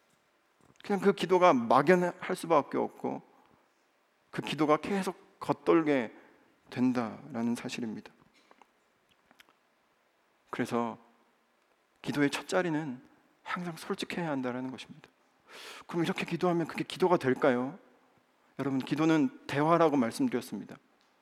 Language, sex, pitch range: Korean, male, 125-175 Hz